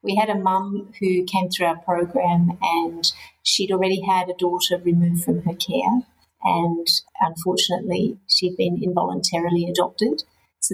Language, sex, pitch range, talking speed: English, female, 175-210 Hz, 145 wpm